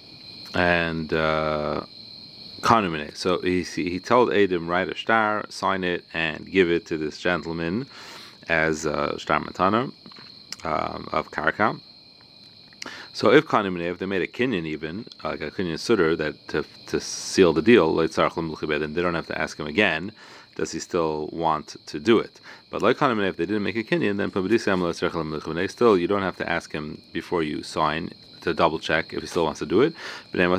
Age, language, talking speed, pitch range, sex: 30-49, English, 175 wpm, 80-100 Hz, male